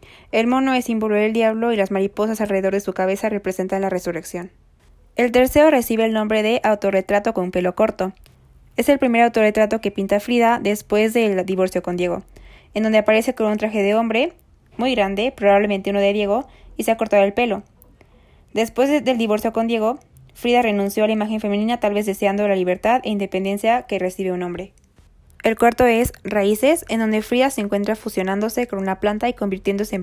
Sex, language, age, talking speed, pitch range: female, Spanish, 20-39, 190 wpm, 195-230 Hz